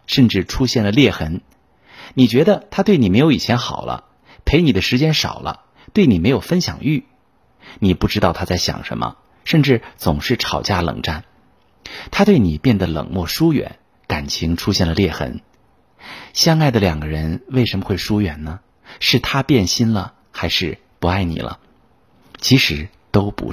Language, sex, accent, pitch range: Chinese, male, native, 90-125 Hz